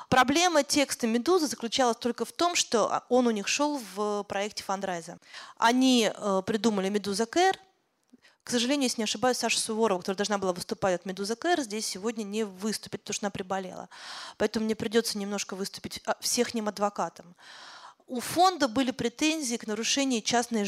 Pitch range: 200-260 Hz